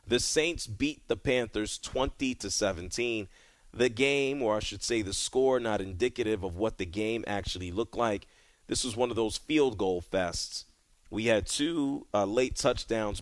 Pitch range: 95-120 Hz